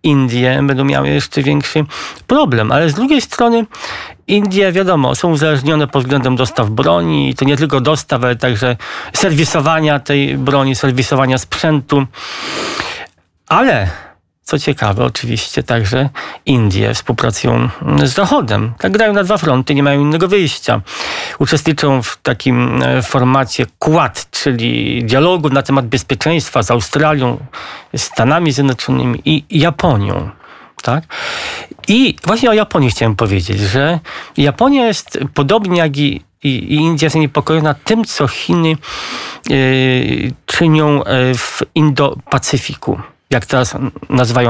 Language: Polish